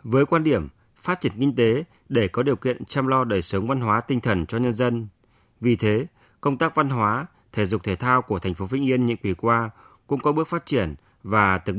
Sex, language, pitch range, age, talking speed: male, Vietnamese, 105-135 Hz, 30-49, 240 wpm